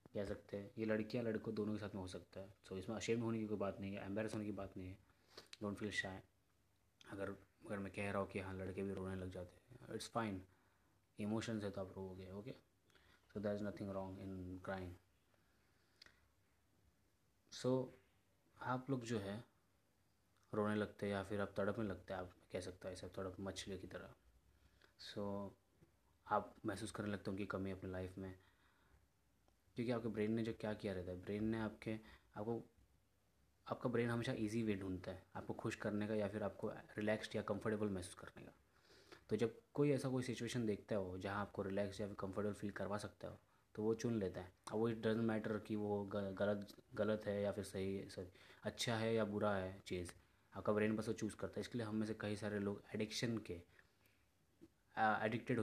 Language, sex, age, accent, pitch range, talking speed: Hindi, male, 20-39, native, 95-110 Hz, 200 wpm